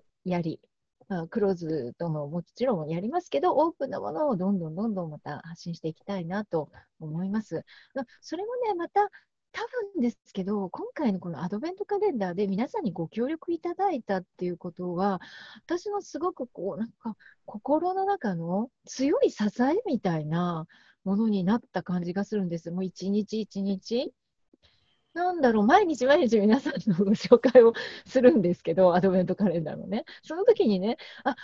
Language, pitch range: Japanese, 185-300 Hz